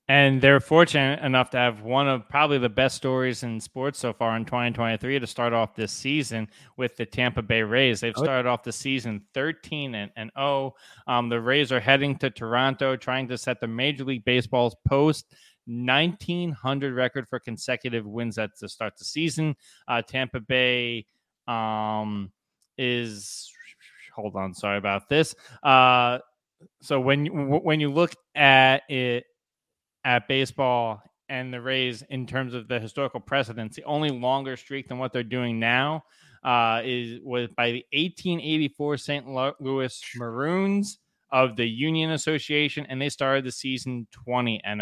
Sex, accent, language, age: male, American, English, 20-39